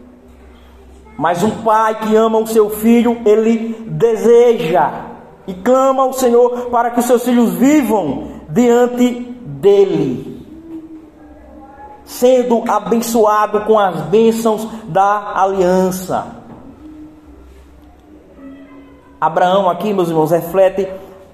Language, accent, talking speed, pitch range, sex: Portuguese, Brazilian, 95 wpm, 165-240 Hz, male